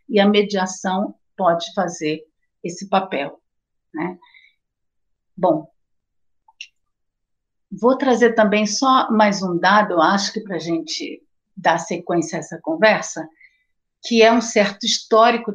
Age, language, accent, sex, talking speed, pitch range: 50-69, Portuguese, Brazilian, female, 120 wpm, 190-230 Hz